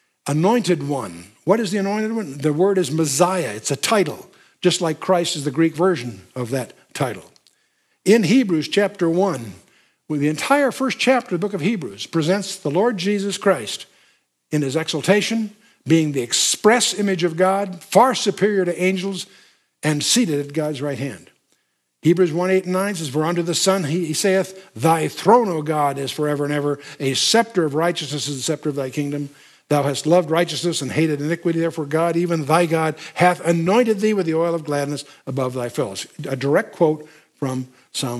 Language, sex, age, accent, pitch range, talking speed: English, male, 60-79, American, 140-185 Hz, 185 wpm